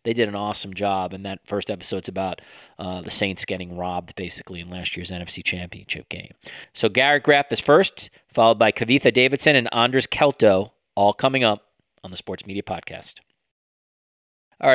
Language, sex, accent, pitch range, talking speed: English, male, American, 95-110 Hz, 175 wpm